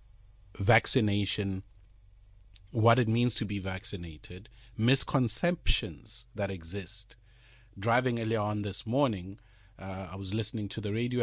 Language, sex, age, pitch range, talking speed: English, male, 30-49, 105-145 Hz, 120 wpm